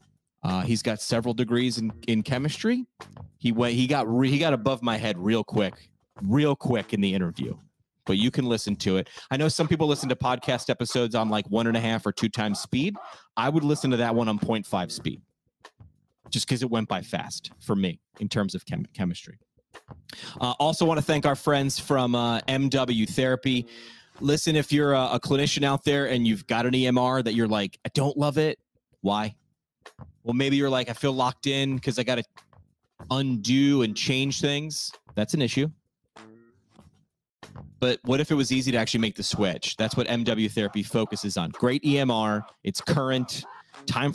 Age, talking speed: 30-49, 195 wpm